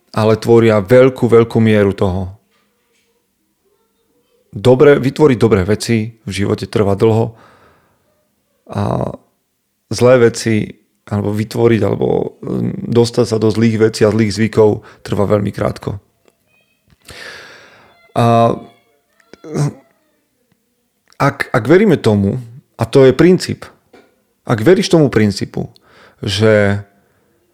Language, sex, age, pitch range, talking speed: Slovak, male, 30-49, 105-120 Hz, 100 wpm